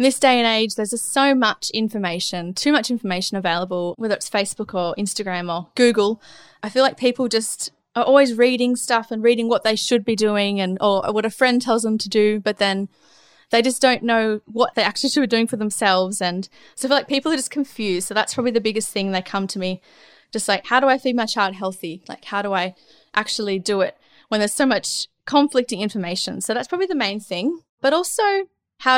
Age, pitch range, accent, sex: 20-39, 195-255 Hz, Australian, female